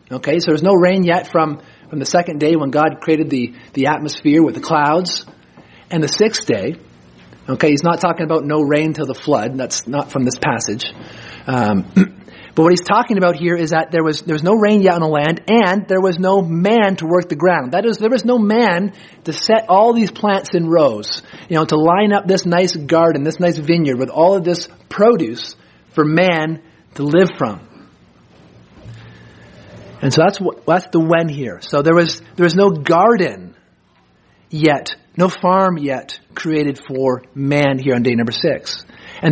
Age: 30-49